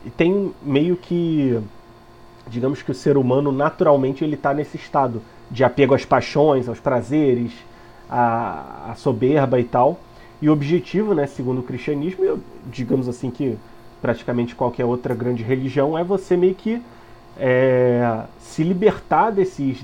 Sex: male